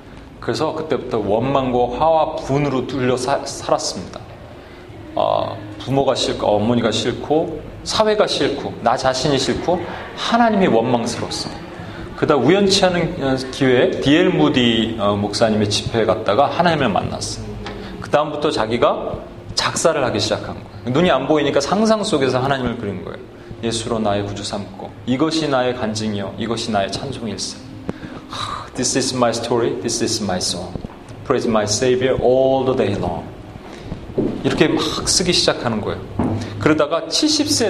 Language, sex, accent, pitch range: Korean, male, native, 110-150 Hz